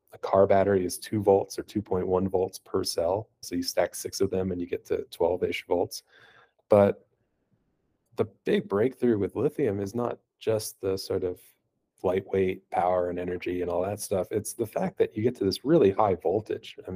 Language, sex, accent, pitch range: English, male, American, 95-120 Hz